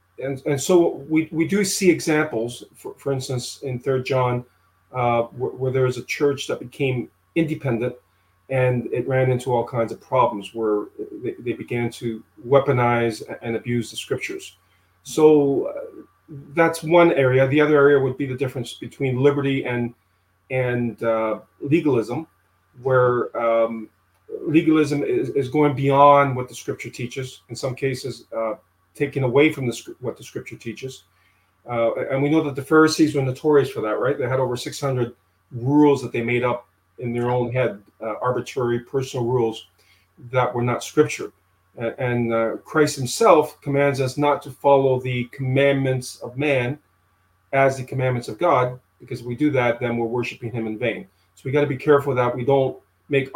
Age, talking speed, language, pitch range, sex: 40-59, 175 wpm, English, 115-140 Hz, male